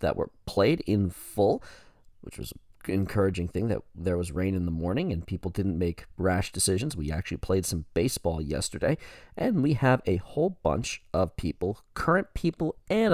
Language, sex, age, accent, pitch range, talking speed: English, male, 40-59, American, 85-105 Hz, 185 wpm